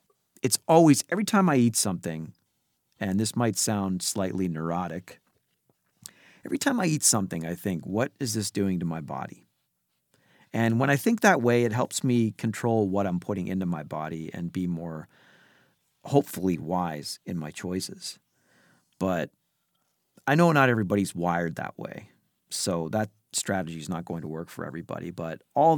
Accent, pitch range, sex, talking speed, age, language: American, 90-115 Hz, male, 165 wpm, 40-59, English